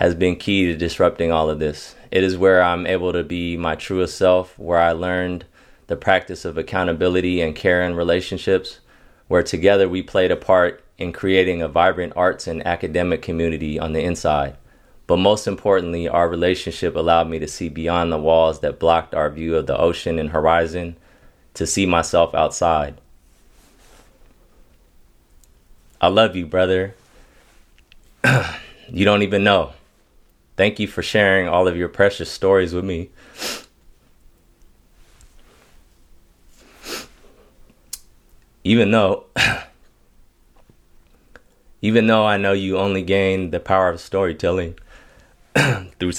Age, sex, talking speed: 20-39, male, 135 wpm